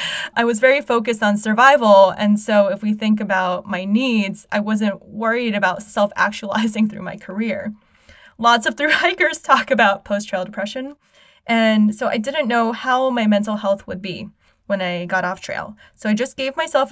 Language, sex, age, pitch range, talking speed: English, female, 10-29, 195-235 Hz, 175 wpm